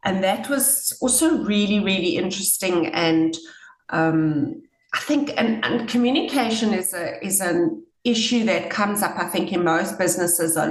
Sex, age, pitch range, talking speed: female, 30-49, 175-235 Hz, 150 wpm